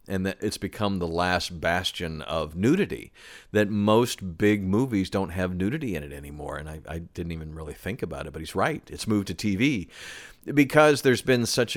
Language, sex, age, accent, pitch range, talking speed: English, male, 50-69, American, 85-105 Hz, 200 wpm